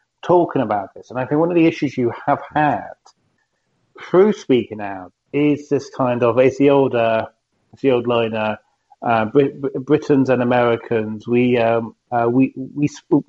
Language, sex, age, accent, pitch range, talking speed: English, male, 30-49, British, 115-145 Hz, 170 wpm